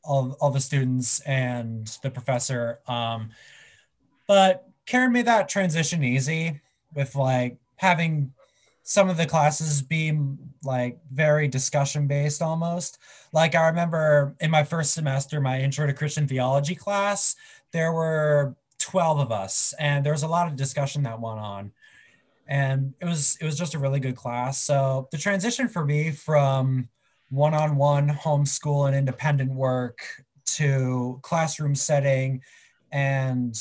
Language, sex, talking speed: English, male, 145 wpm